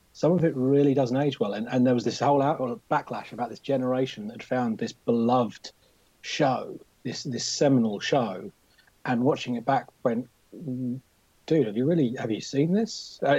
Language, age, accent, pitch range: English, 30-49, British, 110-135 Hz